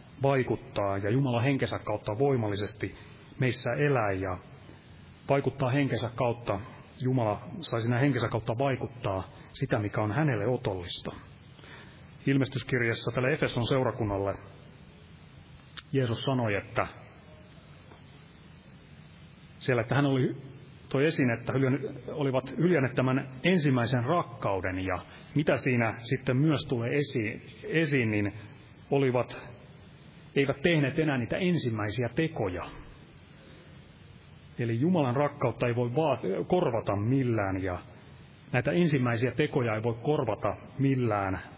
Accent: native